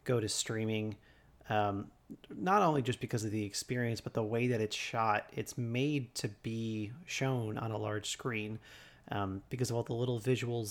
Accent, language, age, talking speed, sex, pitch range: American, English, 30-49, 185 wpm, male, 110-130 Hz